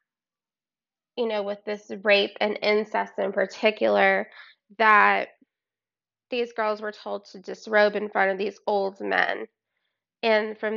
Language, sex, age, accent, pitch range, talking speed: English, female, 20-39, American, 195-235 Hz, 135 wpm